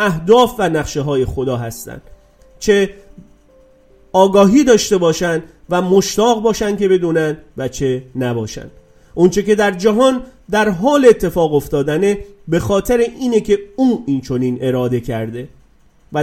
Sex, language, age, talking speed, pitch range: male, Persian, 40-59, 130 wpm, 150-215 Hz